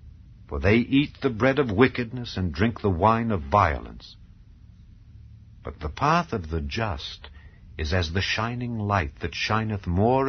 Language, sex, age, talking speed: English, male, 60-79, 155 wpm